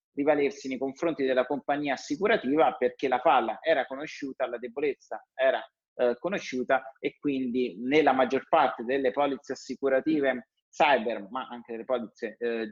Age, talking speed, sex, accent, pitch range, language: 30-49, 140 wpm, male, native, 120-155 Hz, Italian